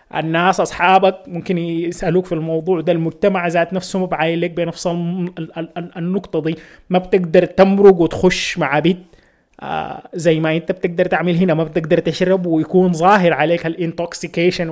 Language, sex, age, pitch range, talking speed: Arabic, male, 20-39, 155-185 Hz, 145 wpm